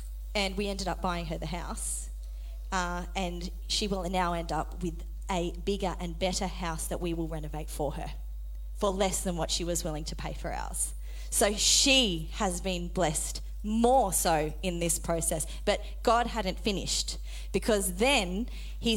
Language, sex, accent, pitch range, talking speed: English, female, Australian, 170-235 Hz, 175 wpm